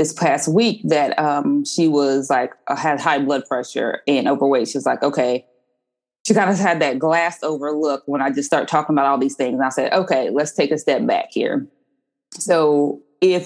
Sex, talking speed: female, 210 wpm